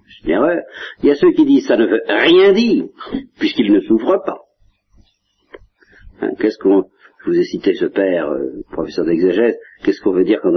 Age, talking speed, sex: 50-69, 200 wpm, male